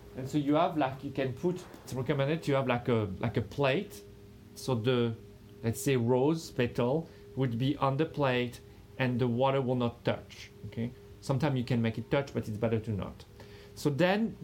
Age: 40-59